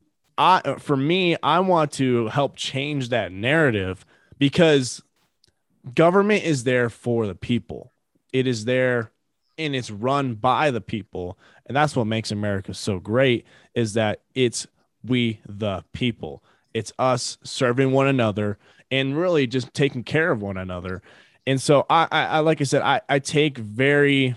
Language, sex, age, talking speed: English, male, 20-39, 155 wpm